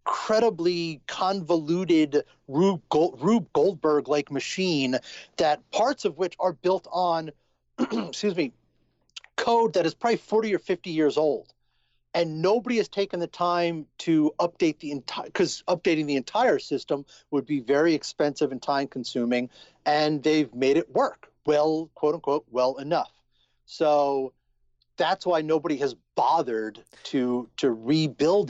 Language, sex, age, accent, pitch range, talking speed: English, male, 40-59, American, 140-185 Hz, 140 wpm